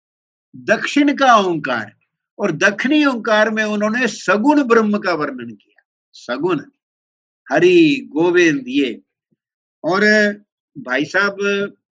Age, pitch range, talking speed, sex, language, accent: 50-69, 185-255 Hz, 100 wpm, male, English, Indian